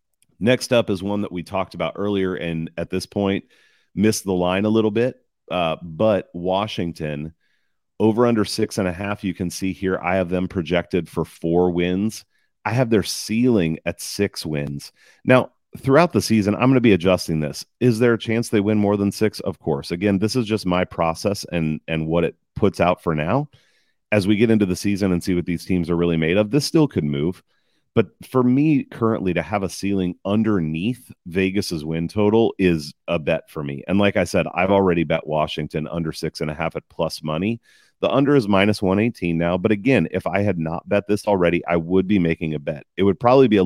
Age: 30-49